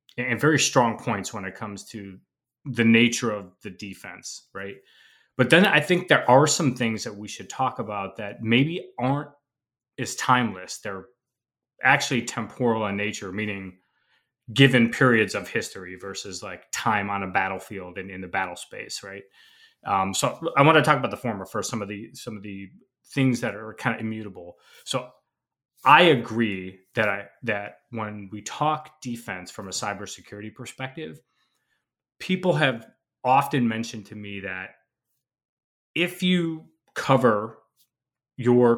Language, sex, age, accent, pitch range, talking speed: English, male, 30-49, American, 100-125 Hz, 155 wpm